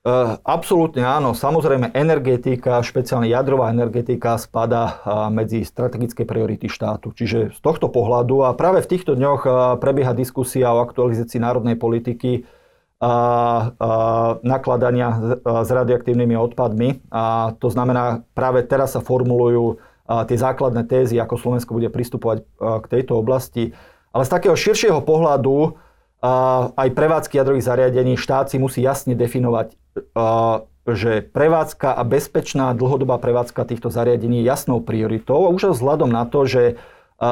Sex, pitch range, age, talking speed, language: male, 115-135 Hz, 40-59, 140 wpm, Slovak